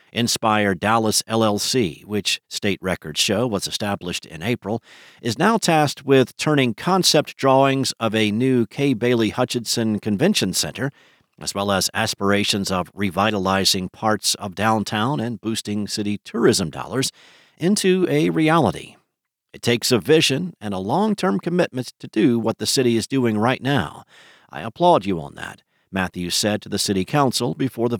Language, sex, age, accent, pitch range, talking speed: English, male, 50-69, American, 100-135 Hz, 155 wpm